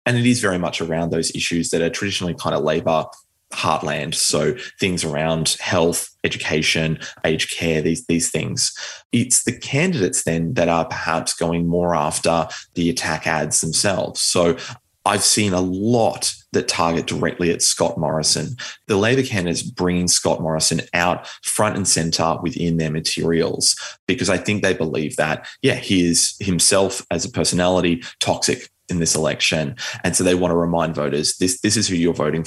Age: 20-39